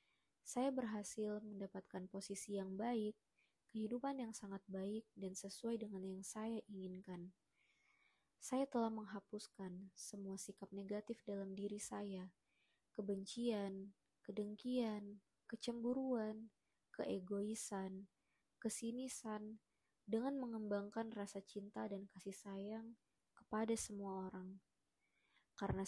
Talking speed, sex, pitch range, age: 95 wpm, female, 195-225 Hz, 20-39